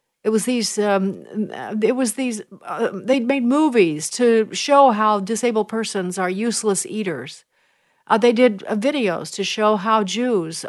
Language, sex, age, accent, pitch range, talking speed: English, female, 50-69, American, 190-240 Hz, 155 wpm